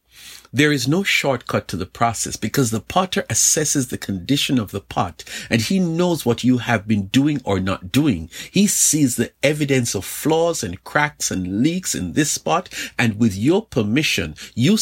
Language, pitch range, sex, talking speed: English, 100-145 Hz, male, 180 wpm